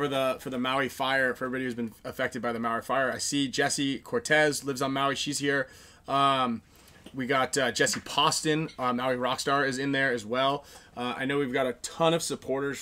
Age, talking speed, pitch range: 20-39, 220 wpm, 125-145 Hz